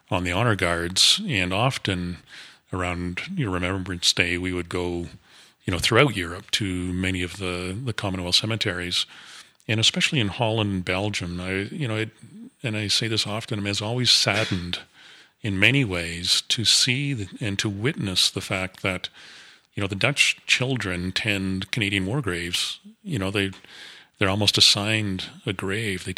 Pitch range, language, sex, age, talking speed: 95-110 Hz, English, male, 40-59, 165 wpm